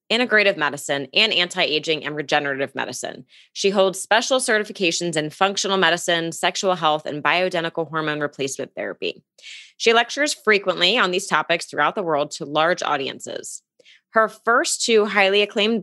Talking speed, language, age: 145 wpm, English, 20-39